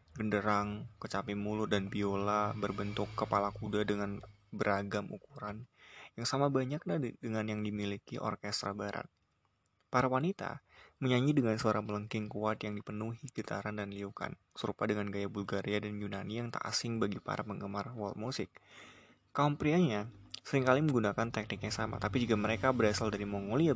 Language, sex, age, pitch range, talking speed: Indonesian, male, 20-39, 100-115 Hz, 140 wpm